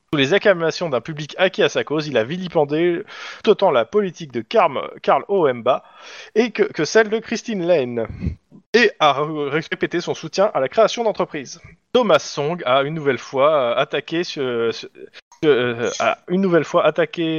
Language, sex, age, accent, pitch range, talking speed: French, male, 20-39, French, 140-200 Hz, 170 wpm